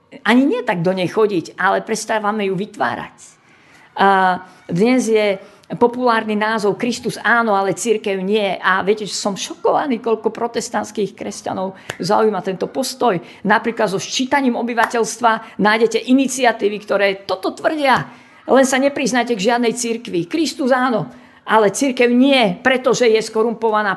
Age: 50-69